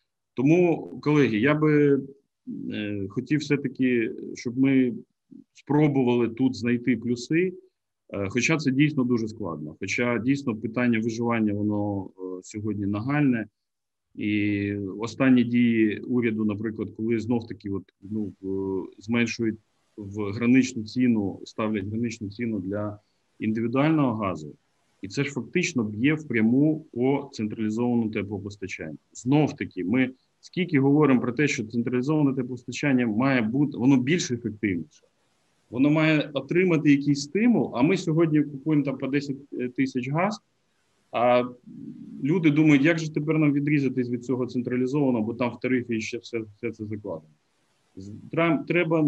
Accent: native